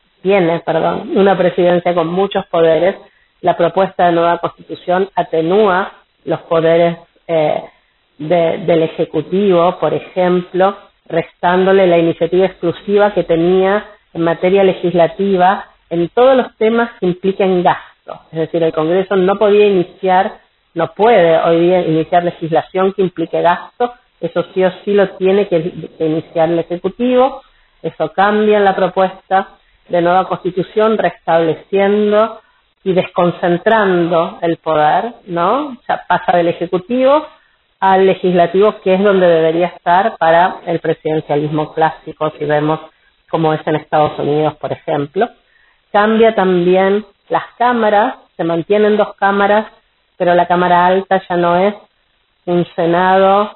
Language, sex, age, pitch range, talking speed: Spanish, female, 40-59, 170-195 Hz, 135 wpm